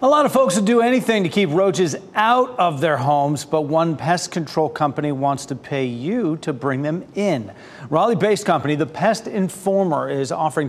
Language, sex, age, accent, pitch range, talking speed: English, male, 40-59, American, 140-185 Hz, 190 wpm